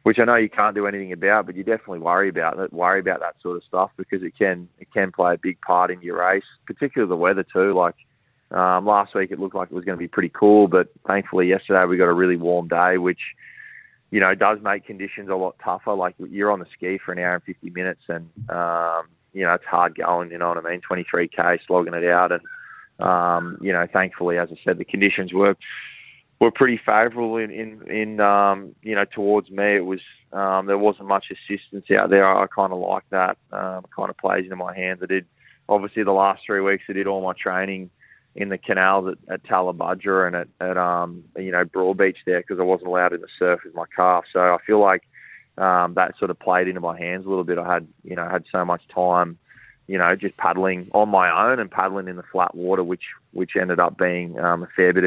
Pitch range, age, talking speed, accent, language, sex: 90-100 Hz, 20-39, 240 wpm, Australian, English, male